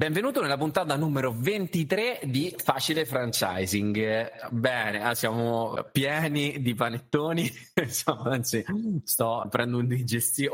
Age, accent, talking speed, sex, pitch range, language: 30-49, native, 100 wpm, male, 100-130 Hz, Italian